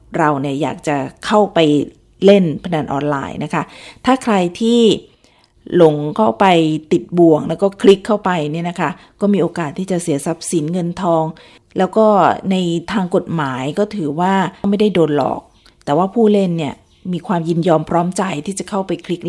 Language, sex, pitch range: Thai, female, 160-195 Hz